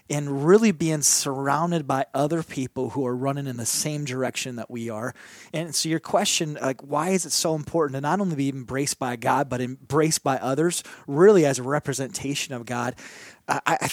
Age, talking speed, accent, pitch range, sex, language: 30-49, 195 wpm, American, 130-160 Hz, male, English